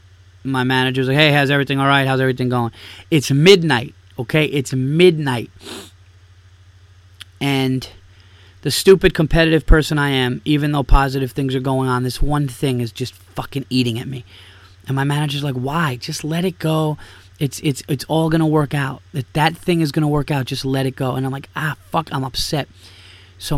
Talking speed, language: 195 wpm, English